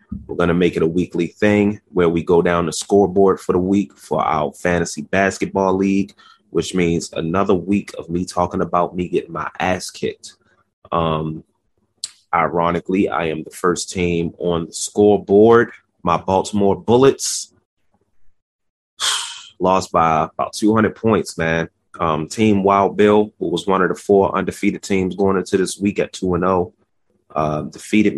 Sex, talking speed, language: male, 160 wpm, English